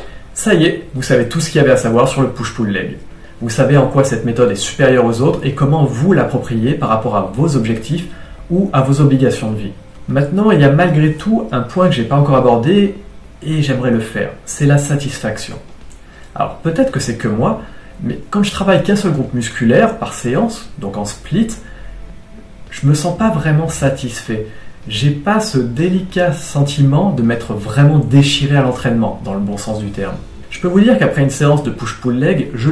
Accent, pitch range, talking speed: French, 120-160 Hz, 210 wpm